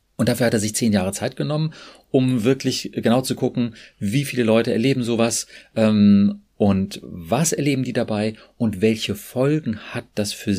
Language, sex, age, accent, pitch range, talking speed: German, male, 40-59, German, 105-130 Hz, 175 wpm